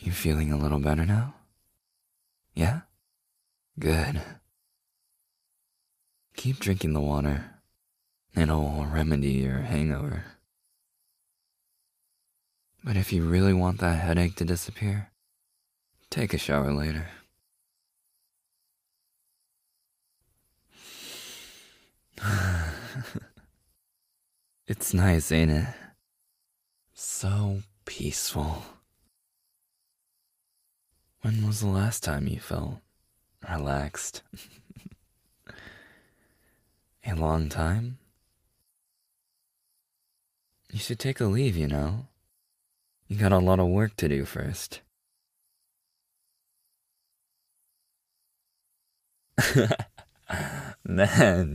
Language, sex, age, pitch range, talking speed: English, male, 20-39, 75-105 Hz, 75 wpm